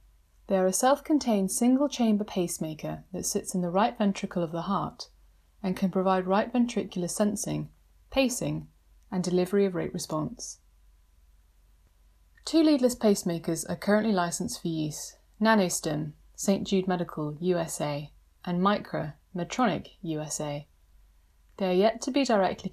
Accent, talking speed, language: British, 130 wpm, English